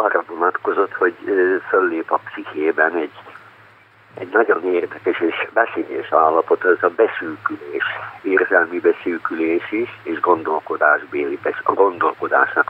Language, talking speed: Hungarian, 115 wpm